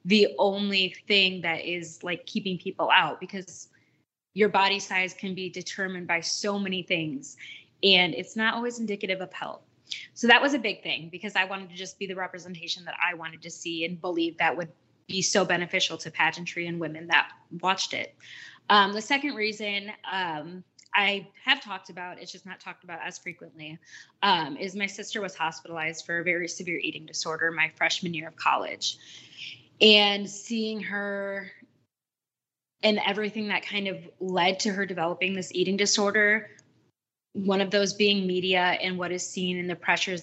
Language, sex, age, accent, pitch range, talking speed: English, female, 20-39, American, 170-200 Hz, 180 wpm